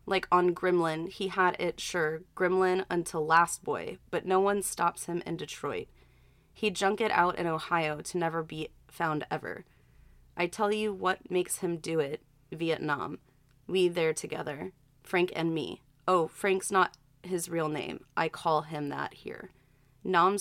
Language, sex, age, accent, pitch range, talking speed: English, female, 20-39, American, 160-185 Hz, 165 wpm